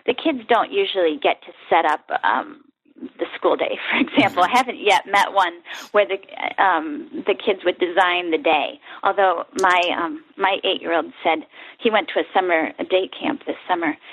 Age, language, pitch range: 40-59, English, 210-295 Hz